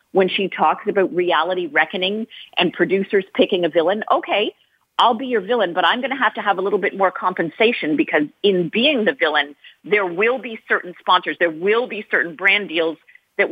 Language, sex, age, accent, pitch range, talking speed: English, female, 40-59, American, 165-220 Hz, 200 wpm